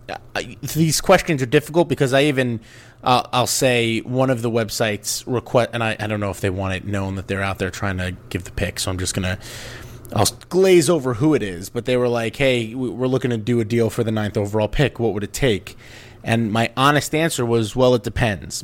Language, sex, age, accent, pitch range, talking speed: English, male, 30-49, American, 100-125 Hz, 240 wpm